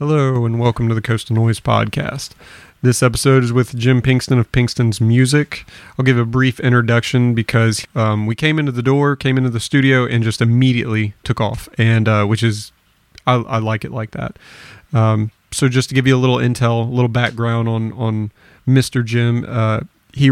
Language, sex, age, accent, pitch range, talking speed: English, male, 30-49, American, 110-125 Hz, 195 wpm